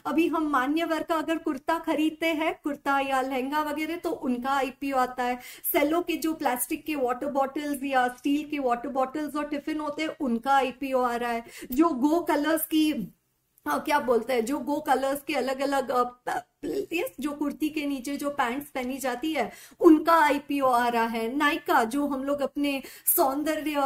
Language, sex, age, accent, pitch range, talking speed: Hindi, female, 50-69, native, 260-320 Hz, 185 wpm